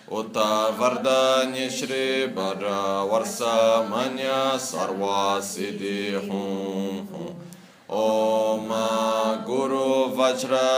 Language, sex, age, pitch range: Italian, male, 20-39, 100-130 Hz